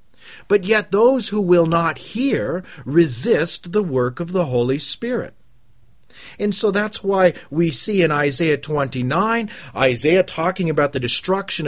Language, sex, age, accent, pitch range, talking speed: English, male, 50-69, American, 135-185 Hz, 145 wpm